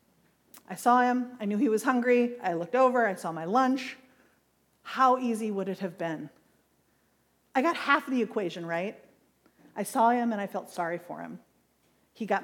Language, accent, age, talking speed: English, American, 40-59, 185 wpm